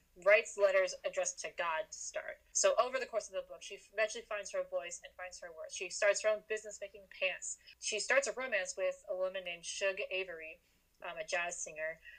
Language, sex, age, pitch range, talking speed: English, female, 20-39, 185-275 Hz, 210 wpm